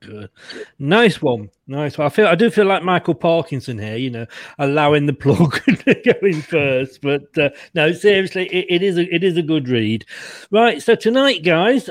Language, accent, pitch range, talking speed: English, British, 150-200 Hz, 200 wpm